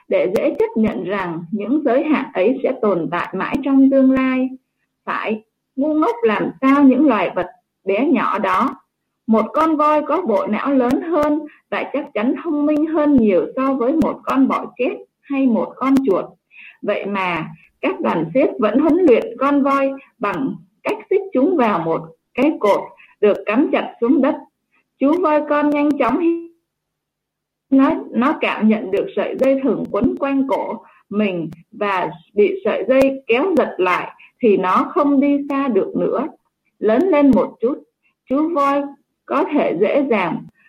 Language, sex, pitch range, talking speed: Vietnamese, female, 220-290 Hz, 170 wpm